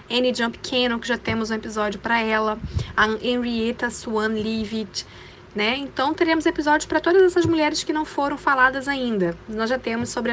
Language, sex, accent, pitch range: Portuguese, female, Brazilian, 190-270 Hz